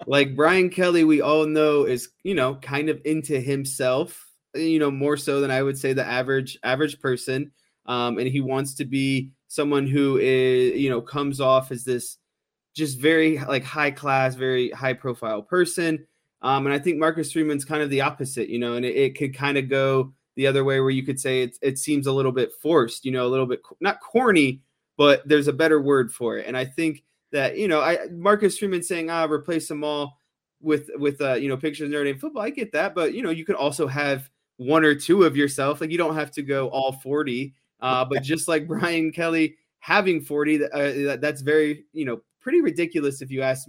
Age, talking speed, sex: 20-39, 220 wpm, male